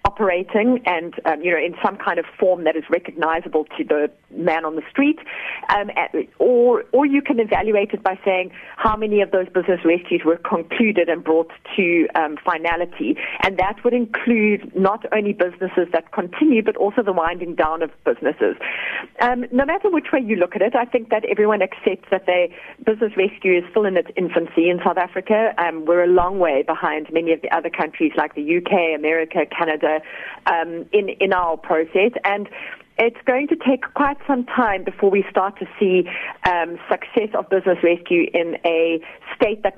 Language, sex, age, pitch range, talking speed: English, female, 40-59, 170-220 Hz, 190 wpm